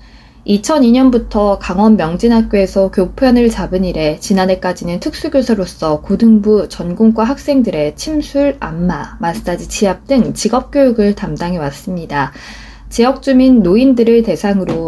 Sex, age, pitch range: female, 20-39, 185-255 Hz